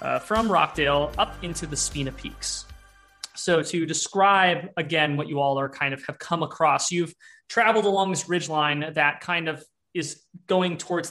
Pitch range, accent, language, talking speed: 145-175 Hz, American, English, 175 wpm